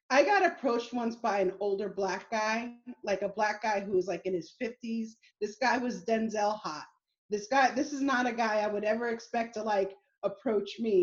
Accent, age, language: American, 30-49, English